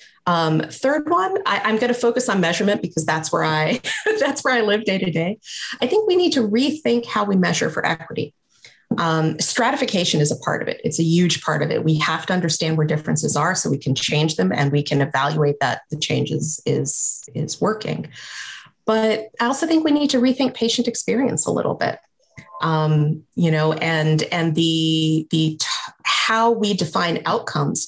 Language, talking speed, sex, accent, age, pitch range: English, 200 wpm, female, American, 30-49, 160-220 Hz